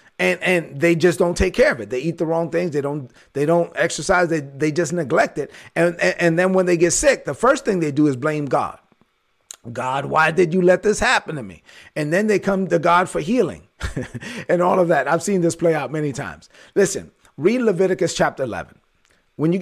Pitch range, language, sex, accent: 150-190 Hz, English, male, American